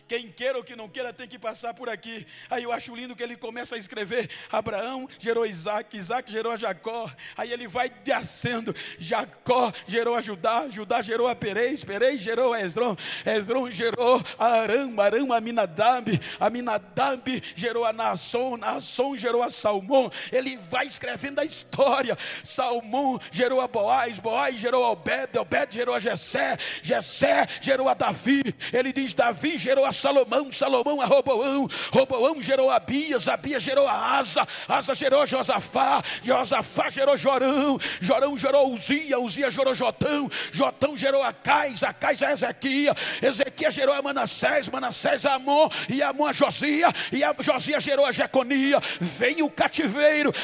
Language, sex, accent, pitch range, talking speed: Portuguese, male, Brazilian, 235-285 Hz, 160 wpm